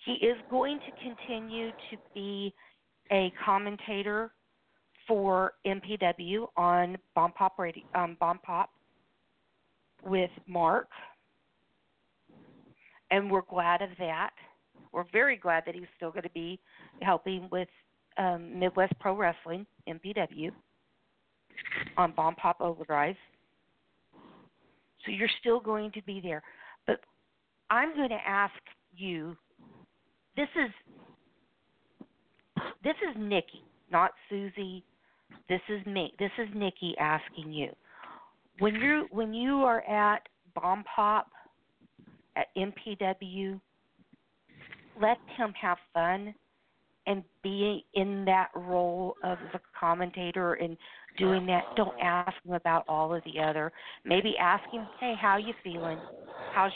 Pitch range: 175-210 Hz